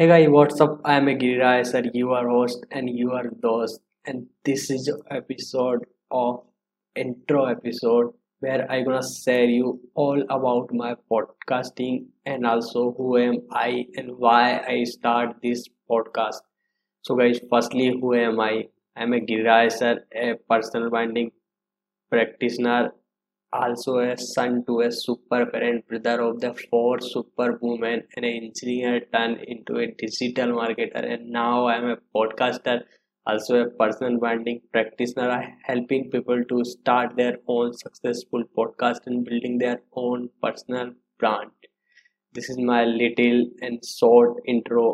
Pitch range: 120-125 Hz